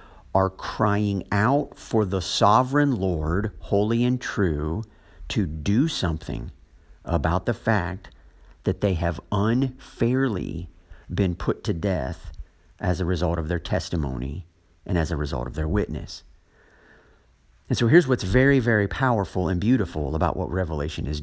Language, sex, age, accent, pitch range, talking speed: English, male, 50-69, American, 85-125 Hz, 140 wpm